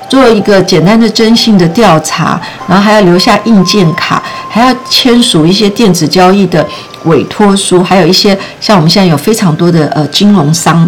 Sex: female